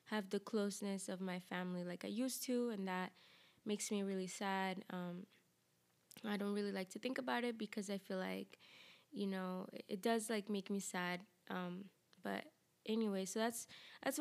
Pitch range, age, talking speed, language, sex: 185-220 Hz, 20-39, 185 wpm, English, female